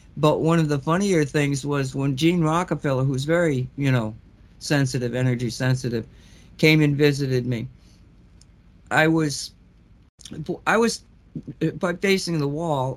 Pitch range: 140-190 Hz